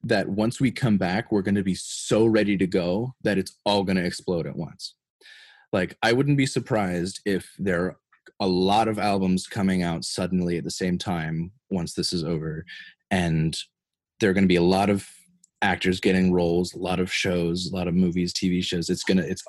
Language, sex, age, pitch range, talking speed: English, male, 20-39, 90-115 Hz, 210 wpm